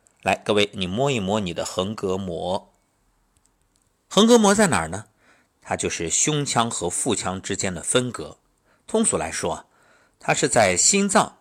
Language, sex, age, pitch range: Chinese, male, 50-69, 95-150 Hz